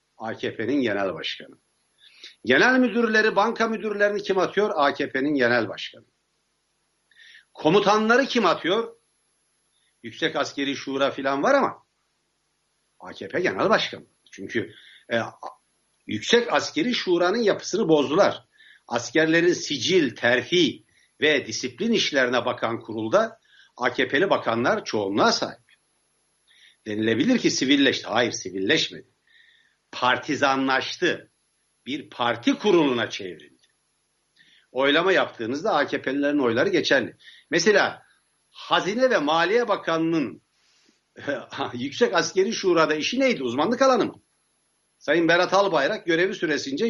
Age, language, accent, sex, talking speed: 60-79, Turkish, native, male, 95 wpm